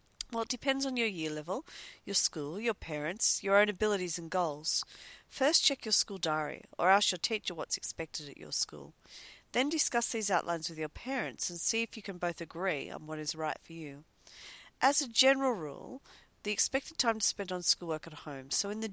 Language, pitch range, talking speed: English, 160-225 Hz, 210 wpm